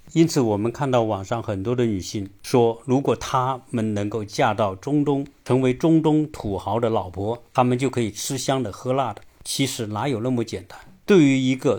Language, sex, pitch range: Chinese, male, 105-150 Hz